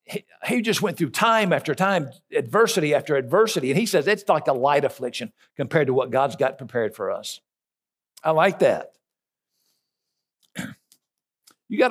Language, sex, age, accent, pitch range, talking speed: English, male, 60-79, American, 135-175 Hz, 155 wpm